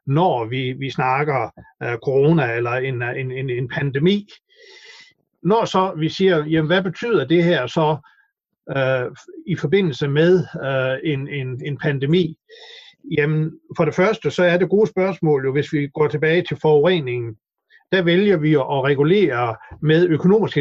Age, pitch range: 60-79, 145-180 Hz